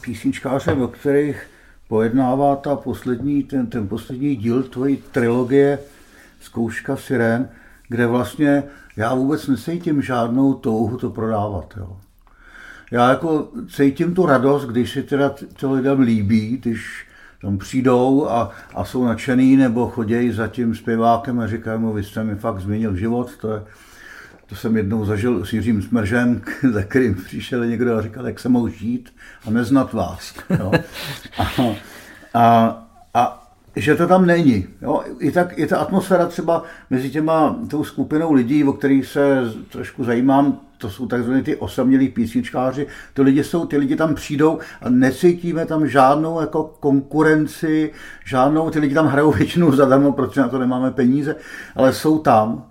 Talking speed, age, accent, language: 155 wpm, 60-79, native, Czech